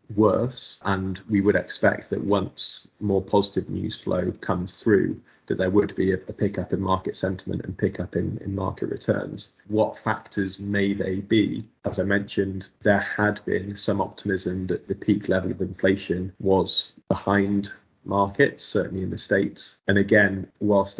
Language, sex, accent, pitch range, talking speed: English, male, British, 95-100 Hz, 165 wpm